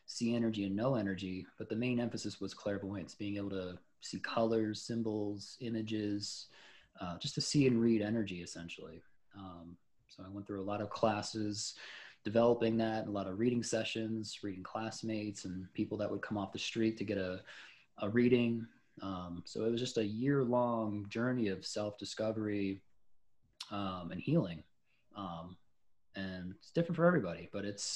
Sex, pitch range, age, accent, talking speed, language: male, 95-115 Hz, 20-39, American, 175 wpm, English